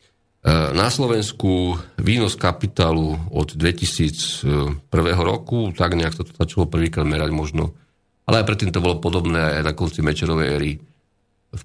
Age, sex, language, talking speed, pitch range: 40-59, male, Slovak, 140 wpm, 80-95 Hz